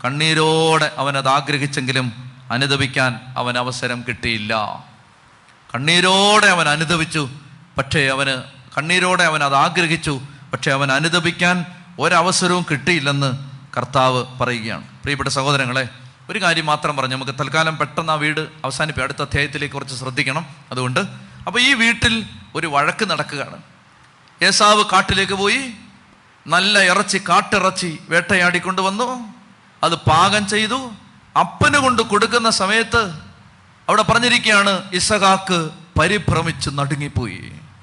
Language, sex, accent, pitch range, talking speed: Malayalam, male, native, 140-195 Hz, 100 wpm